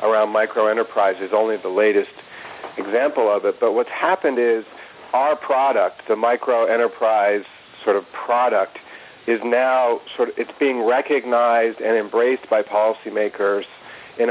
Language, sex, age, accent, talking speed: English, male, 40-59, American, 145 wpm